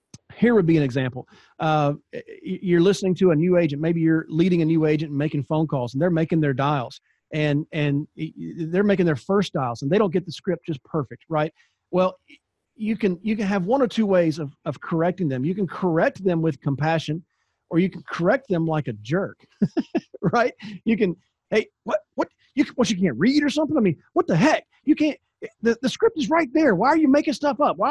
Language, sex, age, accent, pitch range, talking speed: English, male, 40-59, American, 155-215 Hz, 230 wpm